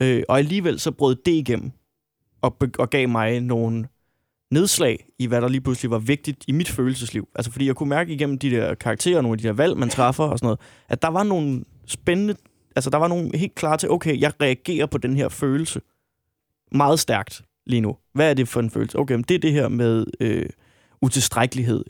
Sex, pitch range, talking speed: male, 115-140 Hz, 220 wpm